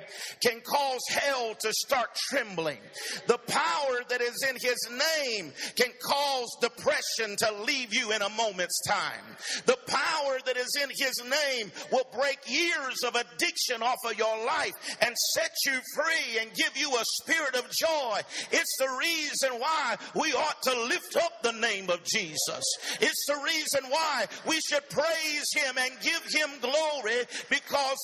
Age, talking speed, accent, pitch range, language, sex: 50-69, 165 wpm, American, 230-290 Hz, English, male